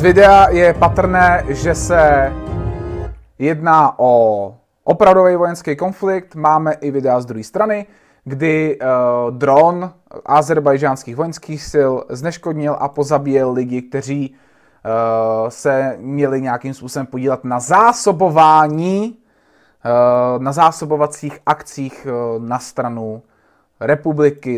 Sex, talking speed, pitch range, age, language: male, 105 wpm, 130-175 Hz, 30-49, Czech